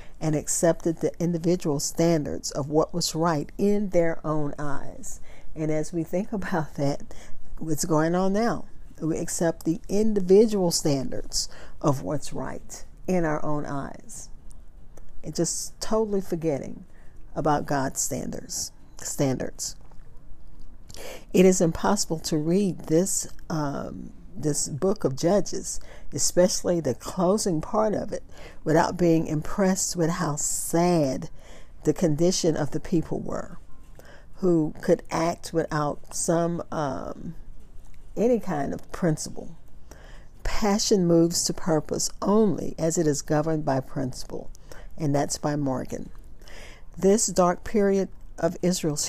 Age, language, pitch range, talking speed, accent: 50-69, English, 150-185 Hz, 125 wpm, American